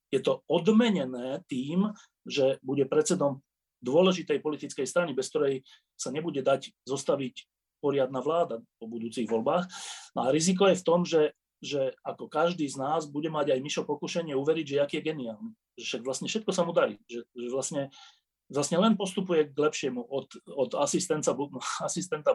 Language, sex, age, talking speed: Slovak, male, 30-49, 160 wpm